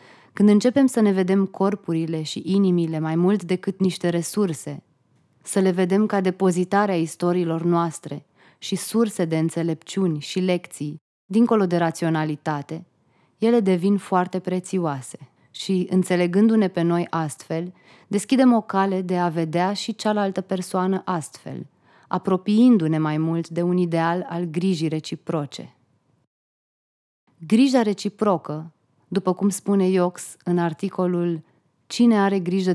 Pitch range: 165-195 Hz